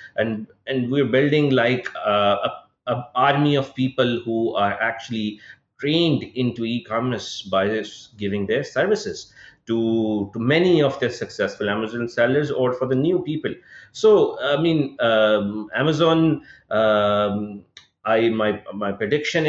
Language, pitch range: English, 110-150 Hz